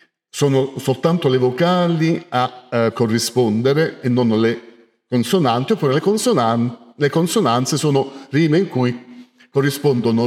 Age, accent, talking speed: 50-69, native, 110 wpm